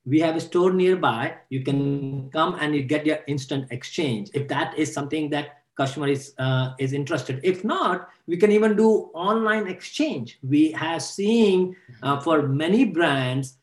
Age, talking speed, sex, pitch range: 50-69, 170 wpm, male, 150-200 Hz